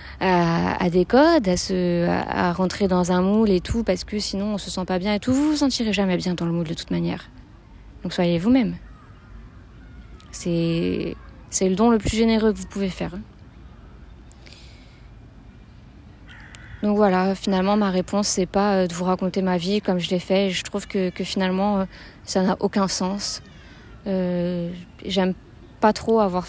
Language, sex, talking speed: French, female, 180 wpm